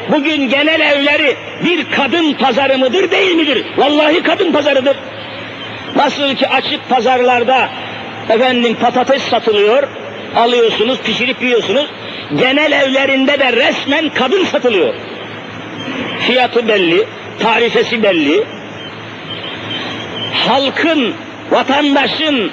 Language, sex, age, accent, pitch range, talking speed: Turkish, male, 50-69, native, 265-310 Hz, 90 wpm